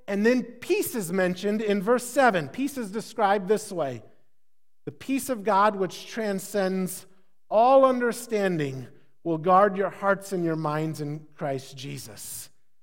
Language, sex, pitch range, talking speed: English, male, 175-240 Hz, 145 wpm